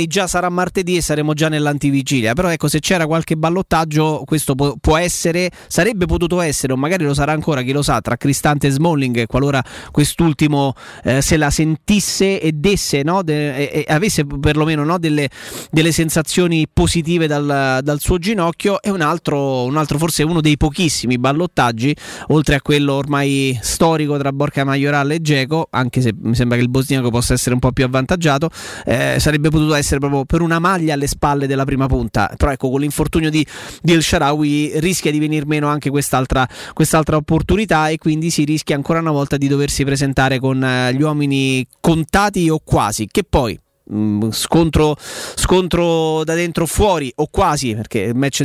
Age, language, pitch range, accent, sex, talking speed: 20-39, Italian, 140-165 Hz, native, male, 170 wpm